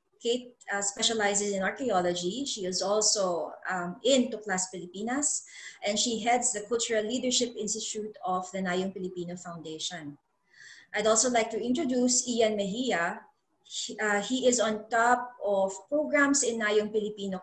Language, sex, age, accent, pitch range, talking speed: English, female, 20-39, Filipino, 190-235 Hz, 145 wpm